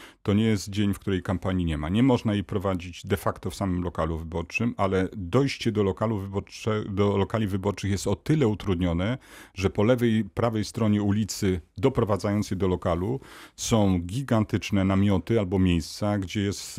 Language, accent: Polish, native